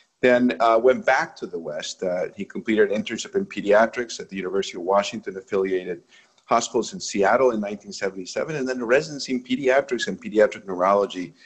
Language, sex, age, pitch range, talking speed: English, male, 50-69, 90-130 Hz, 180 wpm